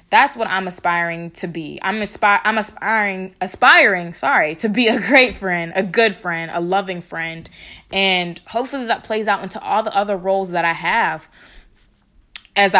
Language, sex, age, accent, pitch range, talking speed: English, female, 20-39, American, 170-200 Hz, 175 wpm